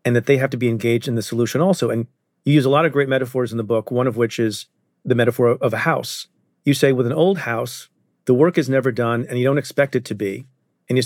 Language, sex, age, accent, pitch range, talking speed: English, male, 40-59, American, 120-150 Hz, 275 wpm